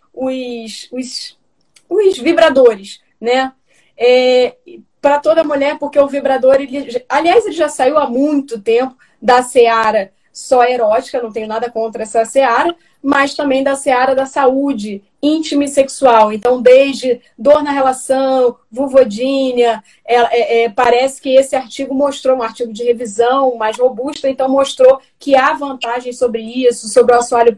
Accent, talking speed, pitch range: Brazilian, 145 wpm, 235-280 Hz